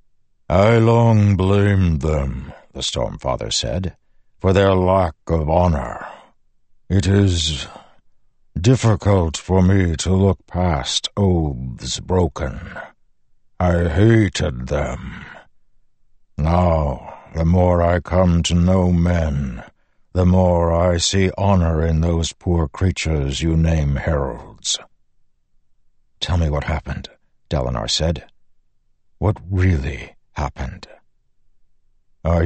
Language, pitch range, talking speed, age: English, 80-100 Hz, 100 wpm, 60-79